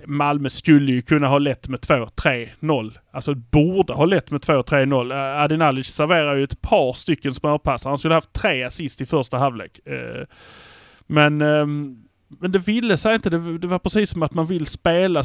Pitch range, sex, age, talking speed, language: 130-165 Hz, male, 30-49, 175 wpm, Swedish